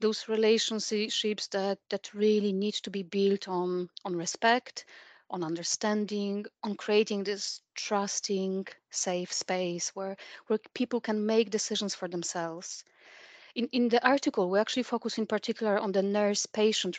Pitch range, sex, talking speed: 185-220 Hz, female, 140 wpm